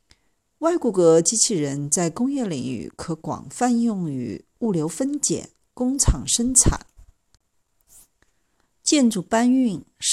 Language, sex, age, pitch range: Chinese, female, 50-69, 145-245 Hz